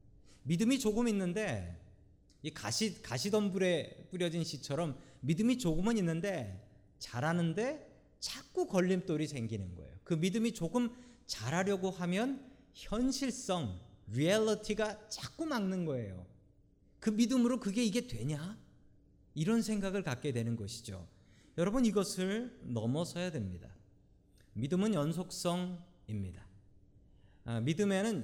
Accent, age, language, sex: native, 40-59, Korean, male